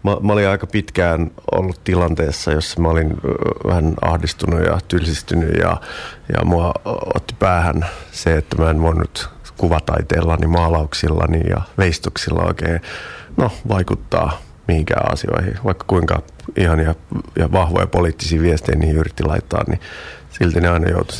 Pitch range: 80-95 Hz